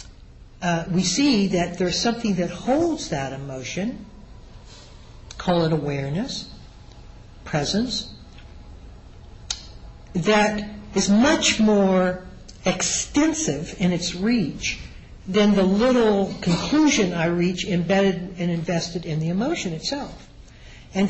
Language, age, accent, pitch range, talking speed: English, 60-79, American, 165-210 Hz, 100 wpm